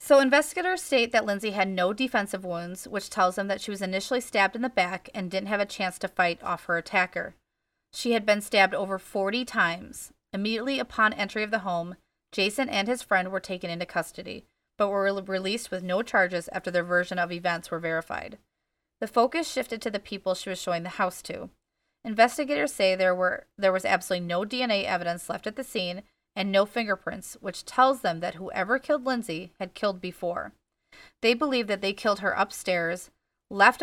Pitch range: 180-230 Hz